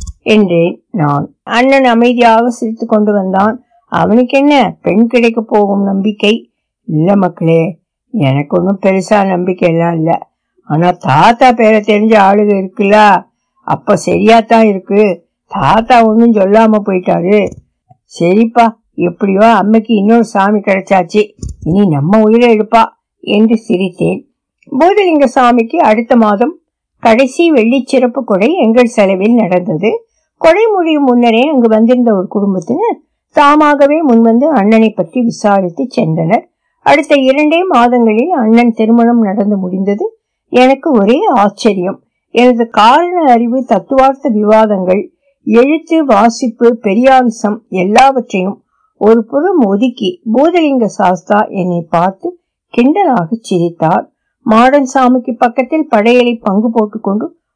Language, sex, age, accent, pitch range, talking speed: Tamil, female, 60-79, native, 200-255 Hz, 90 wpm